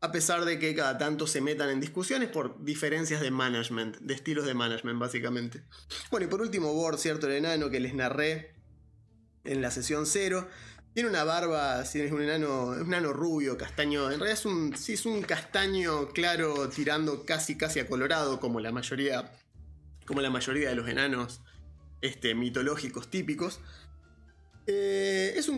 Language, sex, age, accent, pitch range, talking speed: Spanish, male, 20-39, Argentinian, 130-175 Hz, 170 wpm